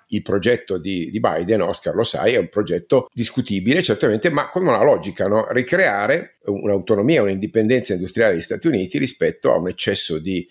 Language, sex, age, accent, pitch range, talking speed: Italian, male, 50-69, native, 95-120 Hz, 170 wpm